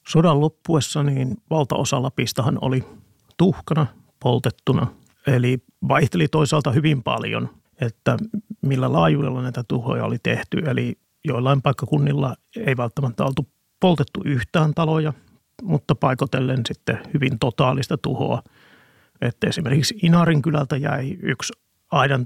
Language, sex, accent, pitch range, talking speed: Finnish, male, native, 130-155 Hz, 115 wpm